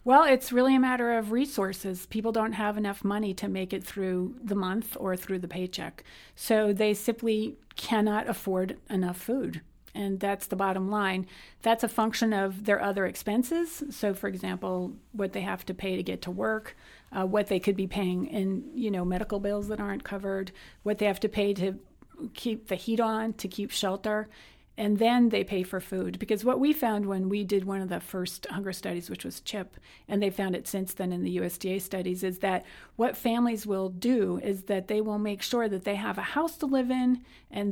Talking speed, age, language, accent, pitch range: 220 wpm, 40-59, English, American, 190-225 Hz